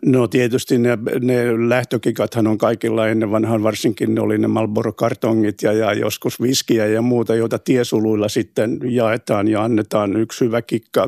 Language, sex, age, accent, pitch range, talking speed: Finnish, male, 60-79, native, 110-130 Hz, 155 wpm